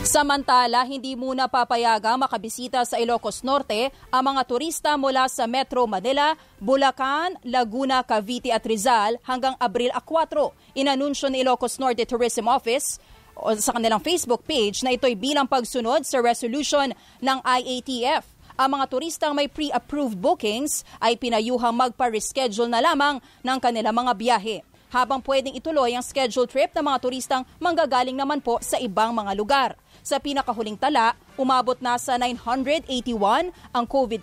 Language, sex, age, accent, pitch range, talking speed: English, female, 20-39, Filipino, 235-275 Hz, 145 wpm